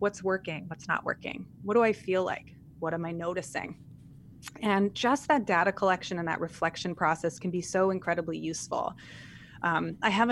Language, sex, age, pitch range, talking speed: English, female, 20-39, 175-210 Hz, 180 wpm